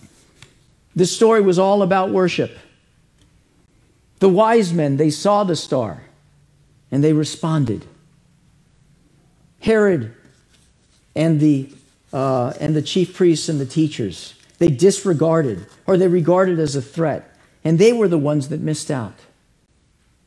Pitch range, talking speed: 135-185 Hz, 125 wpm